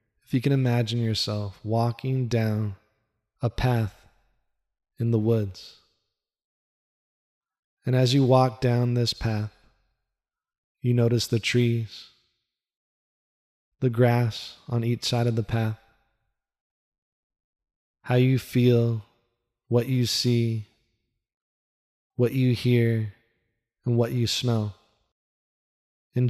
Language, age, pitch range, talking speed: English, 20-39, 110-120 Hz, 105 wpm